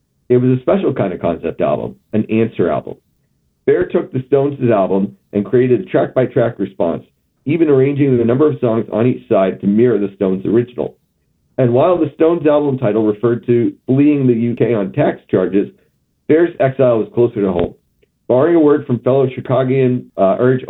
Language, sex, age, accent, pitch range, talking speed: English, male, 50-69, American, 110-135 Hz, 185 wpm